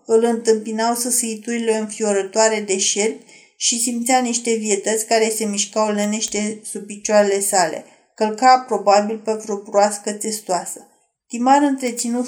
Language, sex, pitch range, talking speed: Romanian, female, 210-235 Hz, 120 wpm